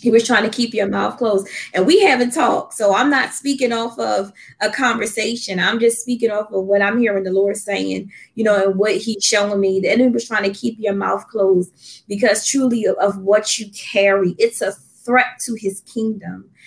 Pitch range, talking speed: 205-240 Hz, 210 wpm